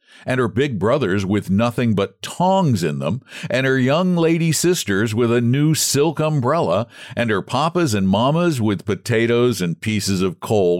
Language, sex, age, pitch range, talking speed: English, male, 60-79, 105-140 Hz, 170 wpm